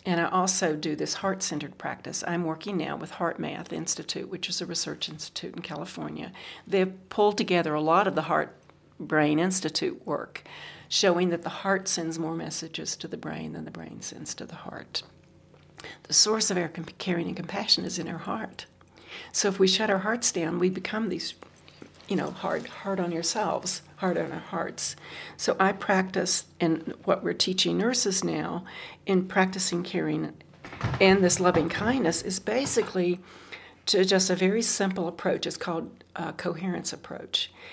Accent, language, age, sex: American, English, 60-79, female